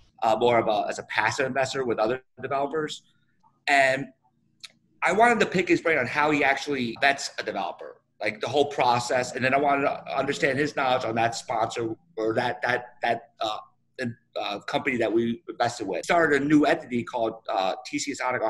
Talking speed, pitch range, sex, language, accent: 195 wpm, 115-145 Hz, male, English, American